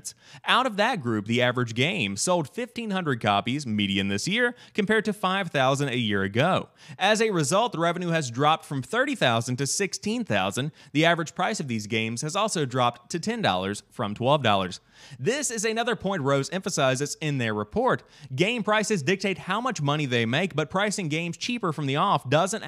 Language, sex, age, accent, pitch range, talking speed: English, male, 30-49, American, 125-195 Hz, 180 wpm